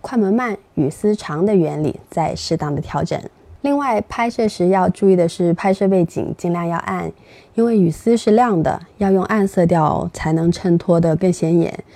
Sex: female